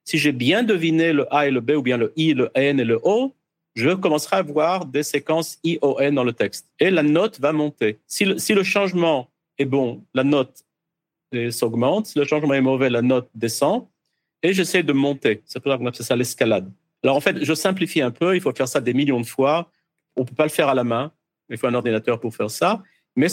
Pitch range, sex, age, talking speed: 125-165 Hz, male, 50-69, 245 wpm